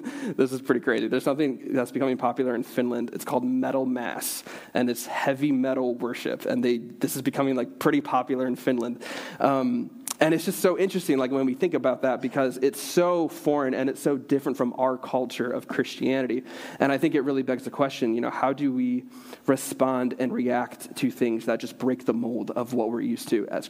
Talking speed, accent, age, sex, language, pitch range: 215 wpm, American, 20-39, male, English, 125-155 Hz